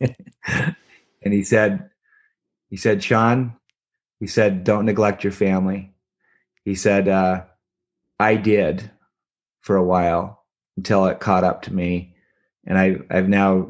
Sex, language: male, English